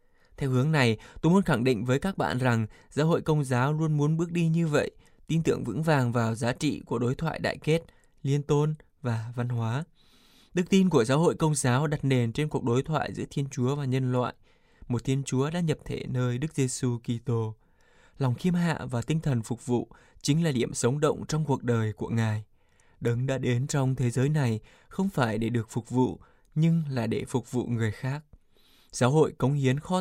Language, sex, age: Vietnamese, male, 20-39